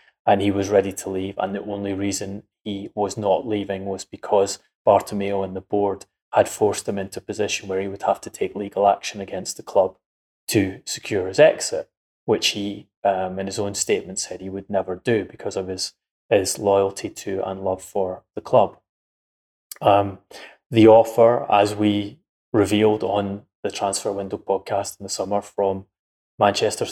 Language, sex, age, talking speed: English, male, 20-39, 180 wpm